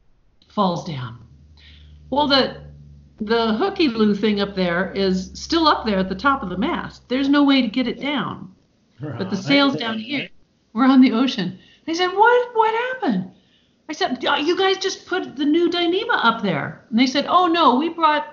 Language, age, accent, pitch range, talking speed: English, 50-69, American, 205-305 Hz, 195 wpm